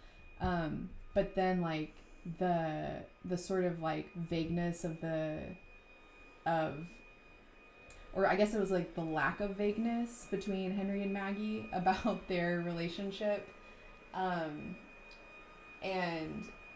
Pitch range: 165-205 Hz